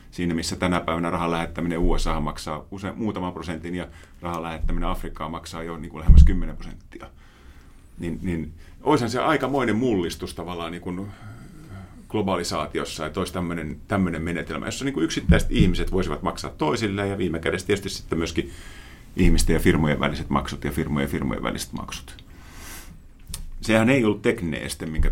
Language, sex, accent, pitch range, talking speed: Finnish, male, native, 80-95 Hz, 155 wpm